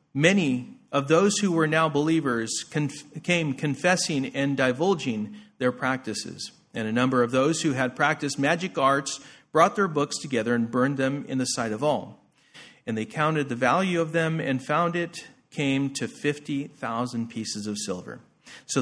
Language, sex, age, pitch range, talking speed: English, male, 40-59, 120-150 Hz, 165 wpm